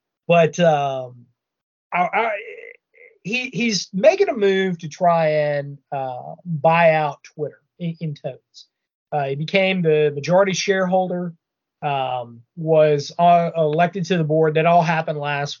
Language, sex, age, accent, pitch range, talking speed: English, male, 30-49, American, 150-200 Hz, 140 wpm